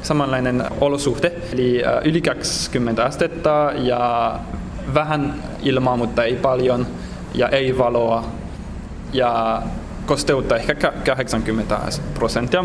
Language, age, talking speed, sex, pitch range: Finnish, 20-39, 95 wpm, male, 115-145 Hz